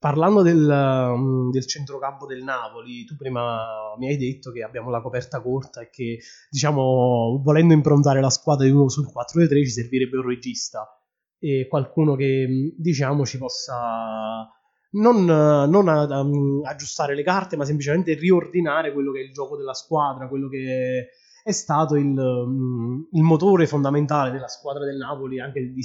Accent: native